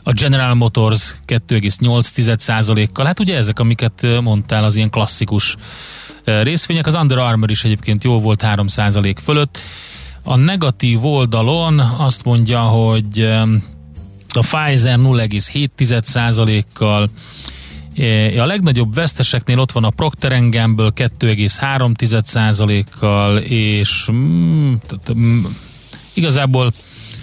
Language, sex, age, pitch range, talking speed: Hungarian, male, 30-49, 105-125 Hz, 95 wpm